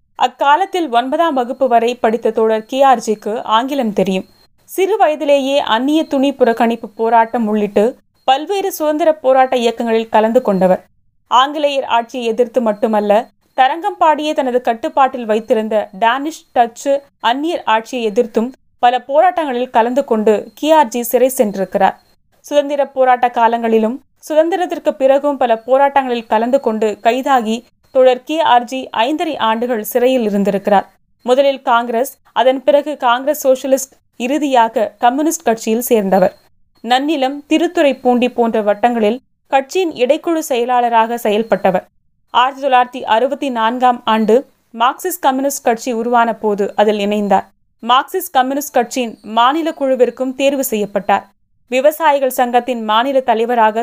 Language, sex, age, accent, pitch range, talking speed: Tamil, female, 30-49, native, 225-275 Hz, 105 wpm